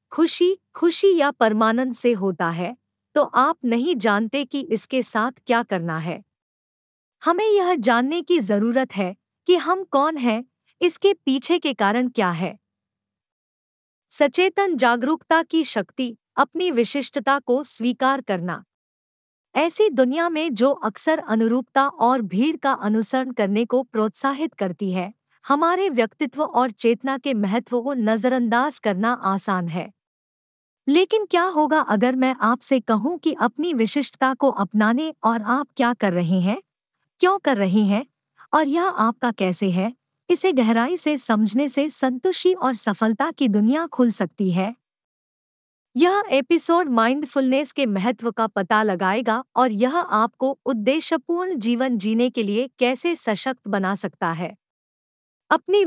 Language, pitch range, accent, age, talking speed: Hindi, 220-305 Hz, native, 50-69, 140 wpm